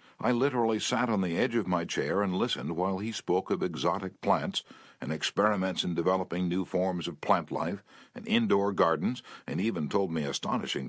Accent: American